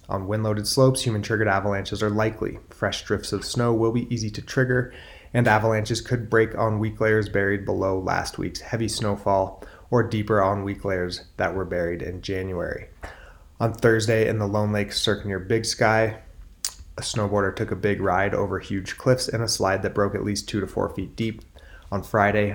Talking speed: 190 wpm